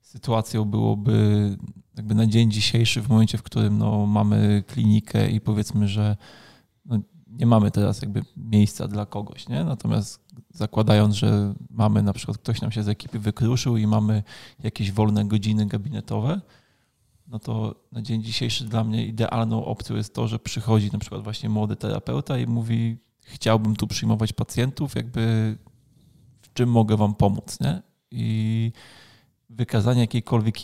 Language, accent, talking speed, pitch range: Polish, native, 145 wpm, 105-125 Hz